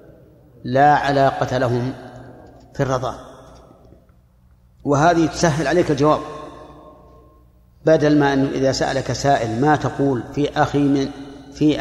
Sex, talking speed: male, 105 wpm